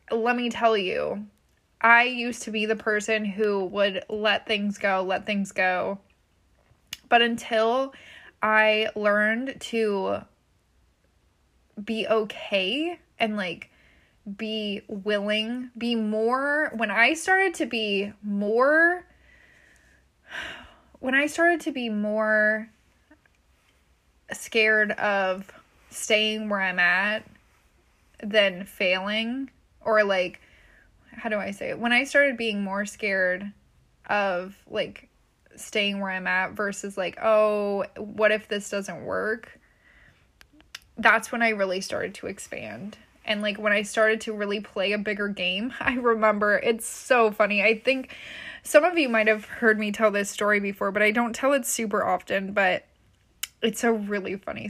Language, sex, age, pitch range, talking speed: English, female, 20-39, 205-230 Hz, 140 wpm